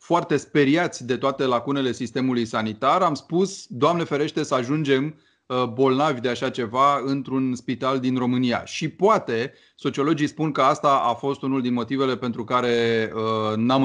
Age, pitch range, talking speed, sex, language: 30-49, 120-155 Hz, 155 wpm, male, Romanian